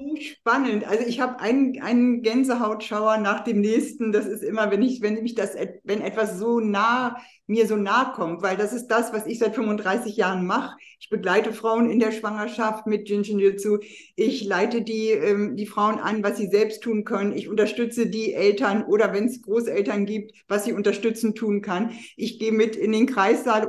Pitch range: 210-235 Hz